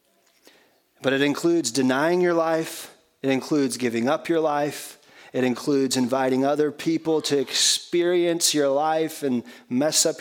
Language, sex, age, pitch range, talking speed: English, male, 30-49, 115-150 Hz, 140 wpm